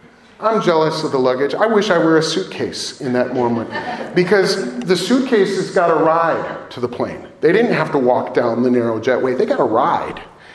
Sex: male